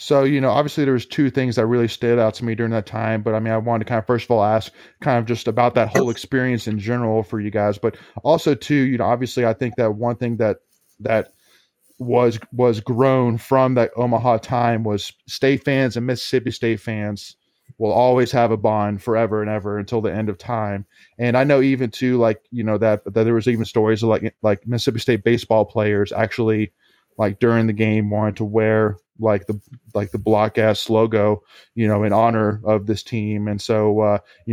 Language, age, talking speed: English, 20-39, 225 wpm